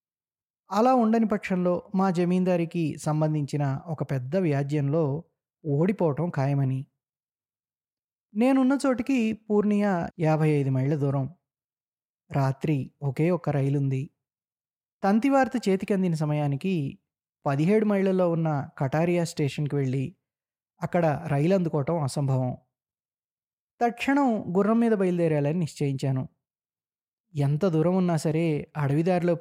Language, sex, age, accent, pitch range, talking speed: Telugu, male, 20-39, native, 140-185 Hz, 90 wpm